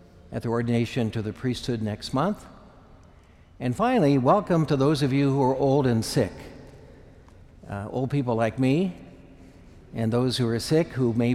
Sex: male